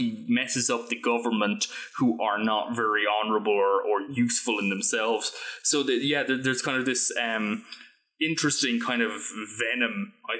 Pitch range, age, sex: 115-145 Hz, 20-39, male